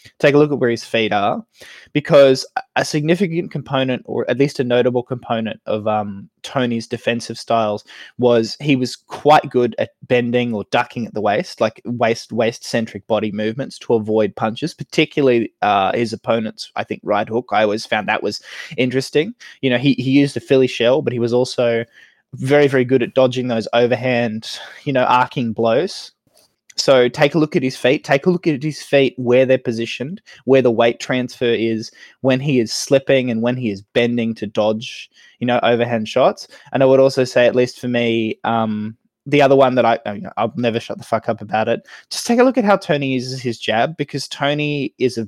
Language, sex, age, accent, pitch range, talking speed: English, male, 20-39, Australian, 115-140 Hz, 205 wpm